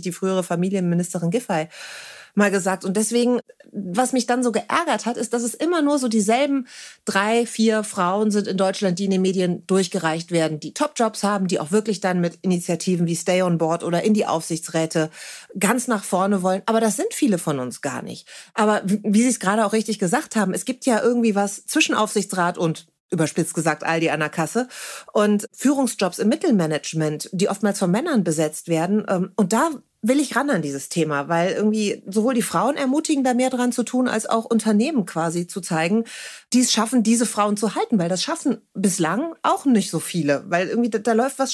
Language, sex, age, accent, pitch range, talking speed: German, female, 40-59, German, 185-235 Hz, 205 wpm